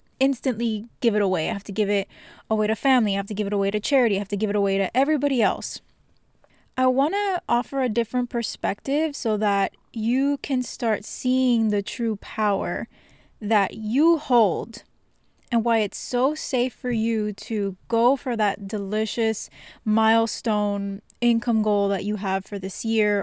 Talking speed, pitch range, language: 180 wpm, 210-250 Hz, English